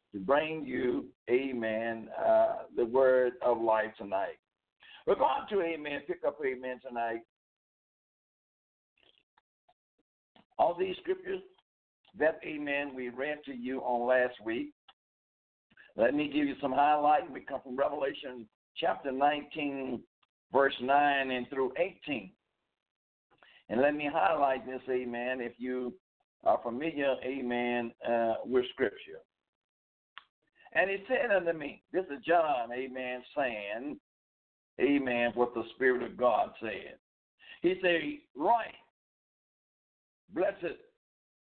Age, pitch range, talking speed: 60-79, 125-180 Hz, 115 wpm